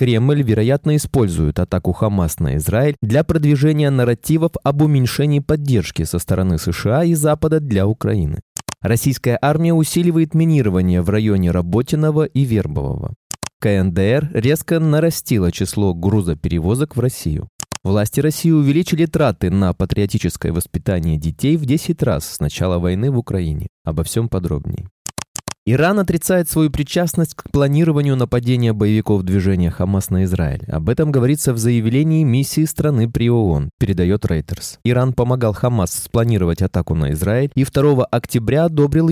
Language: Russian